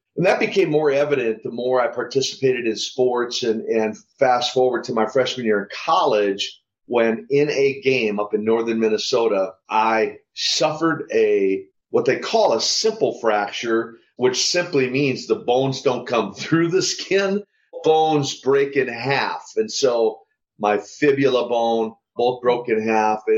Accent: American